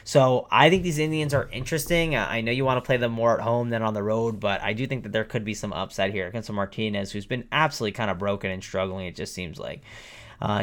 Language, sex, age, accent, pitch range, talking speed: English, male, 20-39, American, 105-140 Hz, 265 wpm